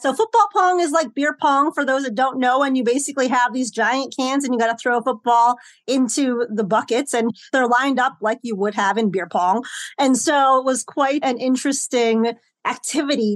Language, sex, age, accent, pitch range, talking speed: English, female, 30-49, American, 245-295 Hz, 215 wpm